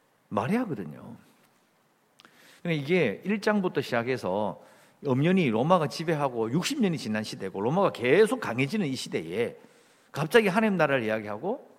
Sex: male